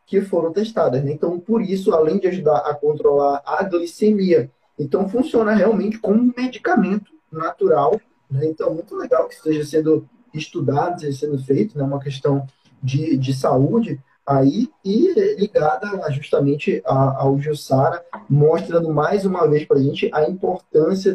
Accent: Brazilian